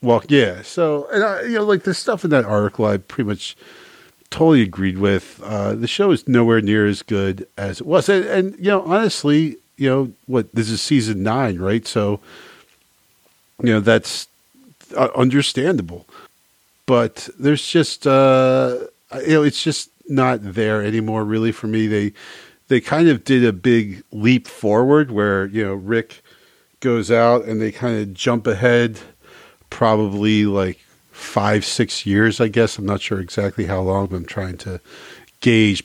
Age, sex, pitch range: 50-69, male, 105-140 Hz